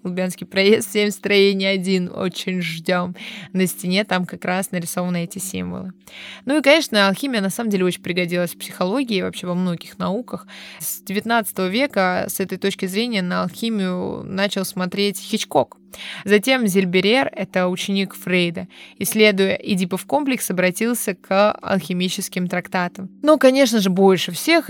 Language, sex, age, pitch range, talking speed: Russian, female, 20-39, 185-215 Hz, 145 wpm